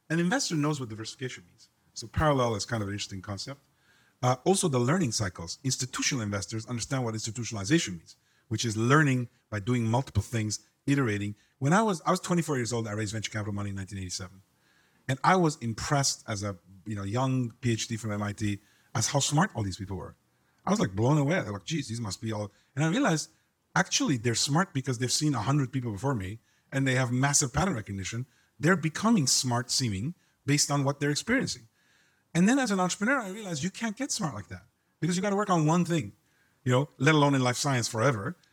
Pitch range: 110-155 Hz